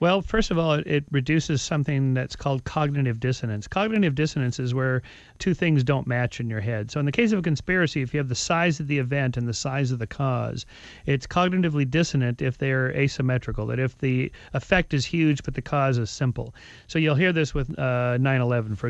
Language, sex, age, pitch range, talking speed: English, male, 40-59, 125-160 Hz, 215 wpm